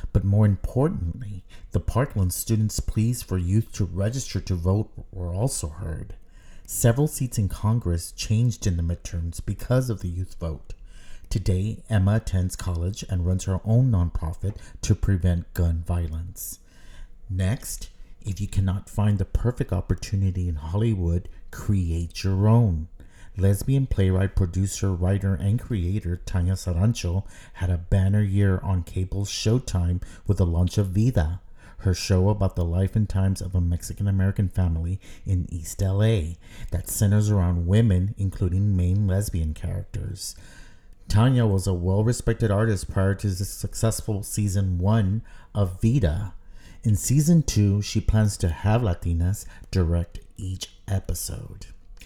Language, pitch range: English, 90-105 Hz